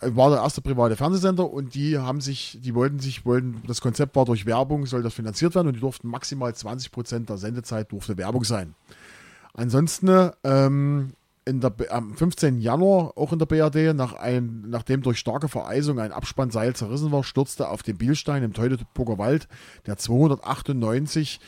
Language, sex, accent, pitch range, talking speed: German, male, German, 110-135 Hz, 175 wpm